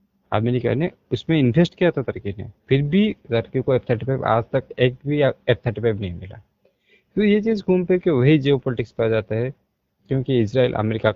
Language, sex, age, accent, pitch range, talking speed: Hindi, male, 20-39, native, 110-135 Hz, 200 wpm